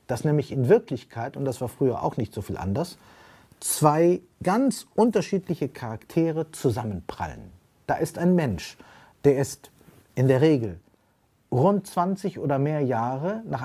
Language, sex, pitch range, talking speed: German, male, 120-170 Hz, 145 wpm